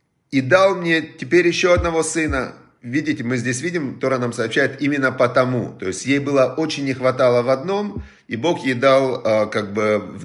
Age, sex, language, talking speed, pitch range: 30-49, male, Russian, 195 wpm, 120-155 Hz